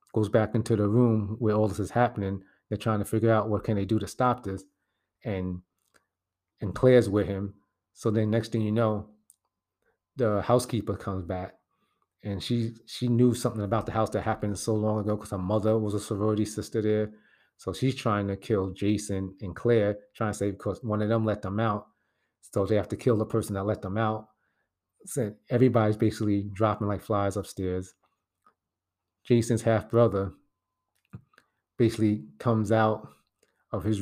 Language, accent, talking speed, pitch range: English, American, 180 wpm, 100-110 Hz